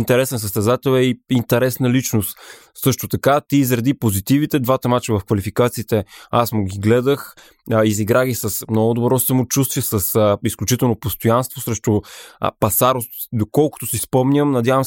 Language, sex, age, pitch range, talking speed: Bulgarian, male, 20-39, 110-130 Hz, 135 wpm